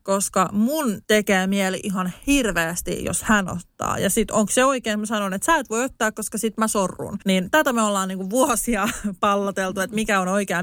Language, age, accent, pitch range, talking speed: Finnish, 30-49, native, 190-245 Hz, 205 wpm